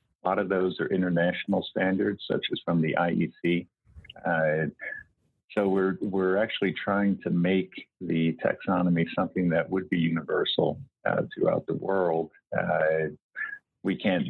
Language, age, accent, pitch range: English, 50-69, American, 85-100 Hz